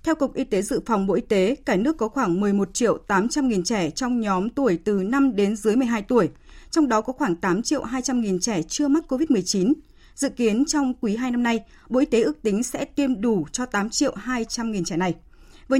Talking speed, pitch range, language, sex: 235 wpm, 195-265 Hz, Vietnamese, female